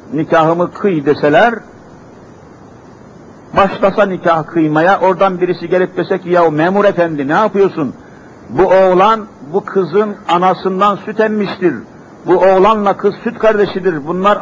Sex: male